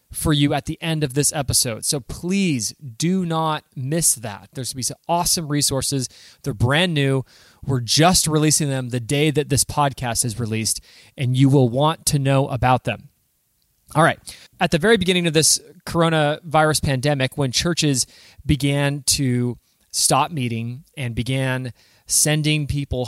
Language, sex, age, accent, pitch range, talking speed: English, male, 20-39, American, 125-155 Hz, 160 wpm